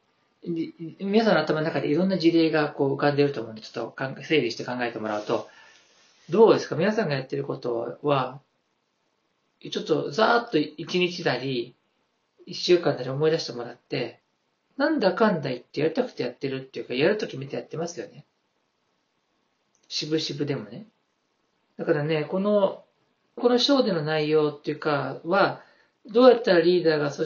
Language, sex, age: Japanese, male, 40-59